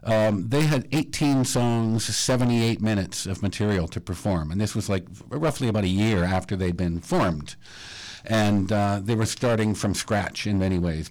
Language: English